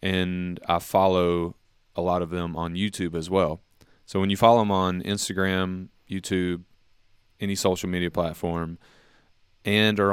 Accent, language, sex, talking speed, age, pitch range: American, English, male, 150 wpm, 20-39, 85-95 Hz